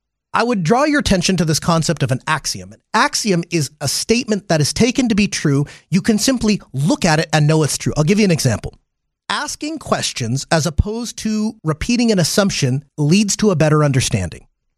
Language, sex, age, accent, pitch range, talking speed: English, male, 30-49, American, 145-210 Hz, 205 wpm